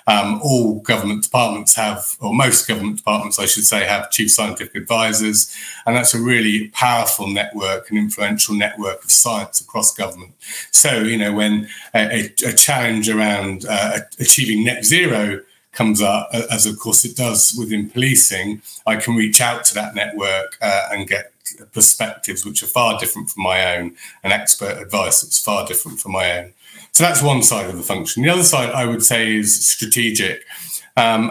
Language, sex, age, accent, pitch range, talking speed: English, male, 30-49, British, 105-120 Hz, 180 wpm